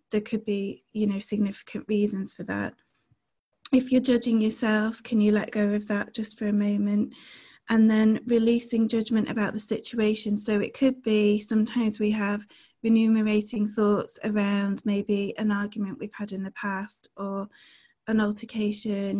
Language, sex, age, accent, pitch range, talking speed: English, female, 20-39, British, 205-220 Hz, 160 wpm